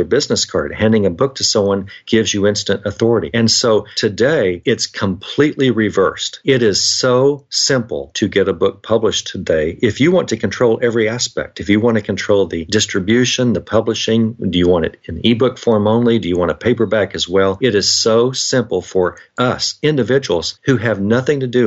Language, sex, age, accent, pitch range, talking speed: English, male, 50-69, American, 100-125 Hz, 195 wpm